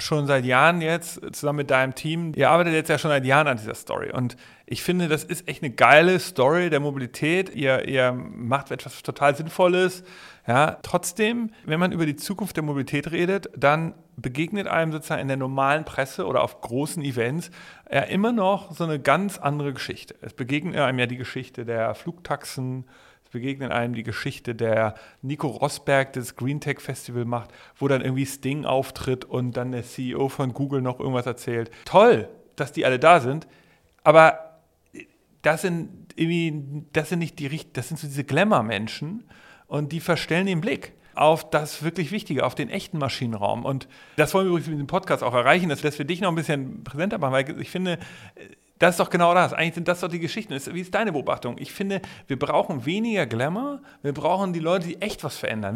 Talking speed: 195 wpm